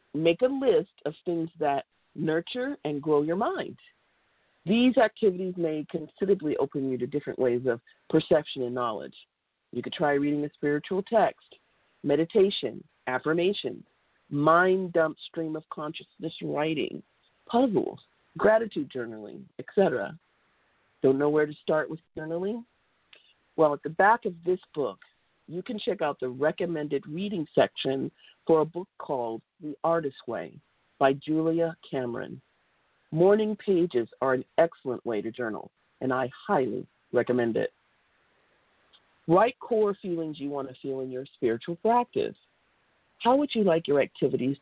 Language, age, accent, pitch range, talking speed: English, 50-69, American, 135-190 Hz, 140 wpm